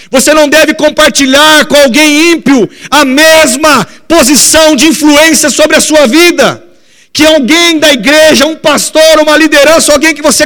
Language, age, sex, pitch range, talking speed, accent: Portuguese, 50-69, male, 275-310 Hz, 155 wpm, Brazilian